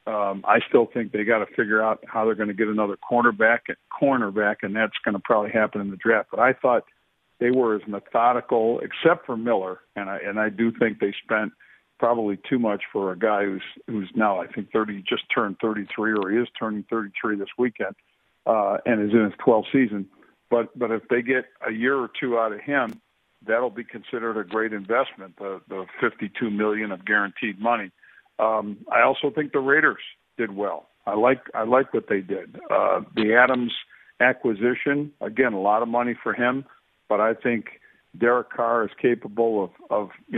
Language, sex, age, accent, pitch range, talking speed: English, male, 50-69, American, 105-125 Hz, 200 wpm